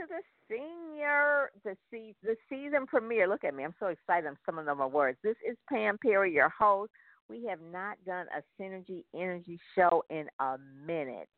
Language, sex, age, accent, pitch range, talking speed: English, female, 50-69, American, 140-205 Hz, 190 wpm